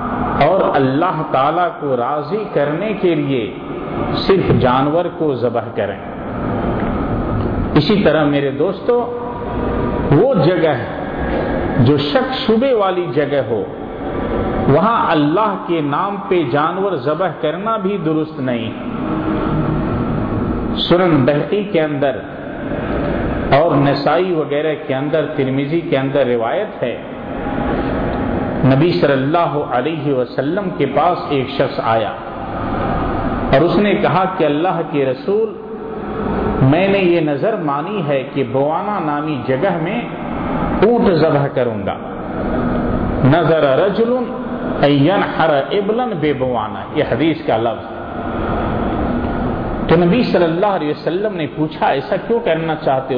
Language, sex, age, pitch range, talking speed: Urdu, male, 50-69, 135-195 Hz, 115 wpm